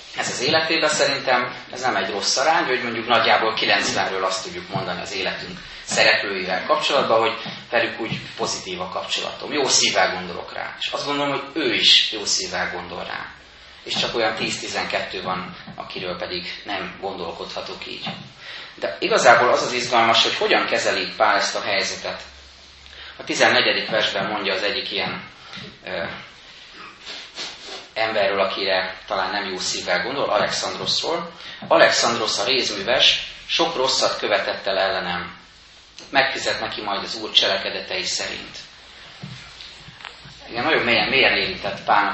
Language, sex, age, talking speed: Hungarian, male, 30-49, 135 wpm